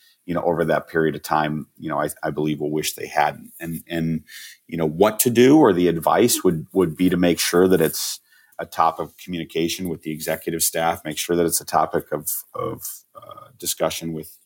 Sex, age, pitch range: male, 40-59, 80-85 Hz